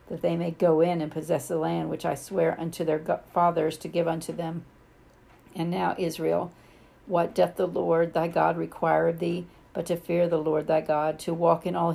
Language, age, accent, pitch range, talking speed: English, 50-69, American, 160-175 Hz, 210 wpm